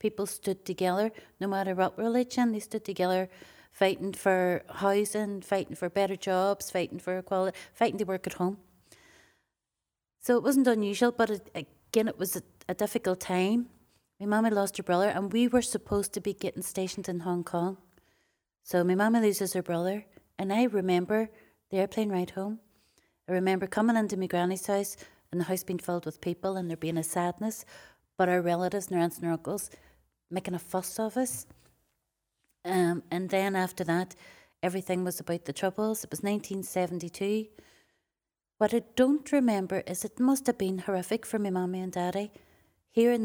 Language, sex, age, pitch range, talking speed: English, female, 30-49, 180-210 Hz, 180 wpm